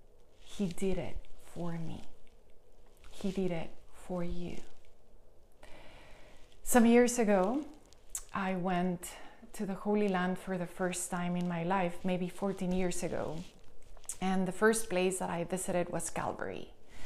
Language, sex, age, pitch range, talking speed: English, female, 30-49, 180-210 Hz, 135 wpm